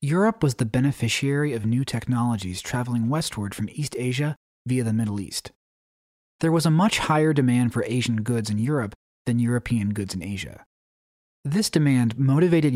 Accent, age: American, 30-49